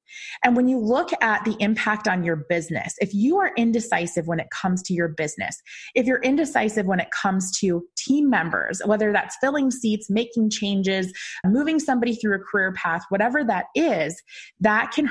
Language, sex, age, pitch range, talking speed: English, female, 20-39, 185-255 Hz, 185 wpm